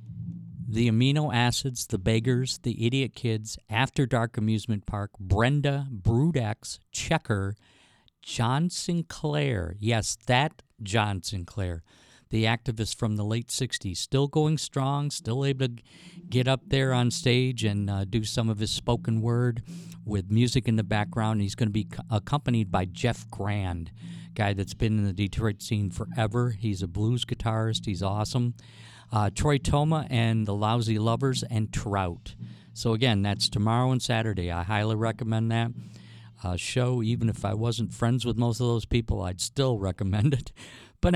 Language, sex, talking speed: English, male, 155 wpm